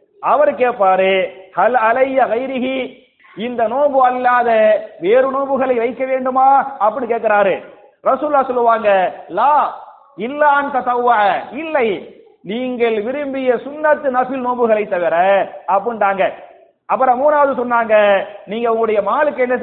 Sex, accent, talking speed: male, Indian, 100 wpm